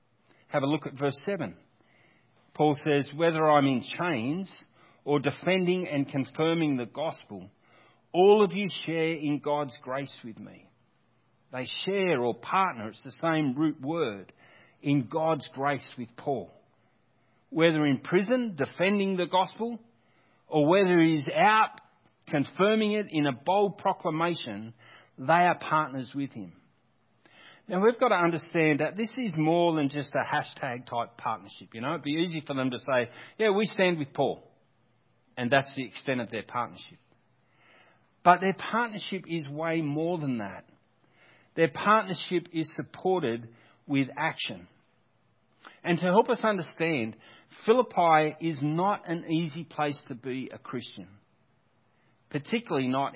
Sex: male